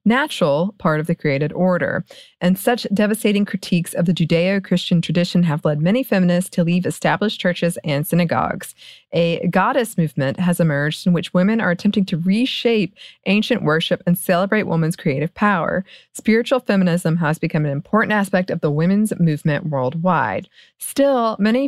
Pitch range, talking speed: 165-205 Hz, 160 wpm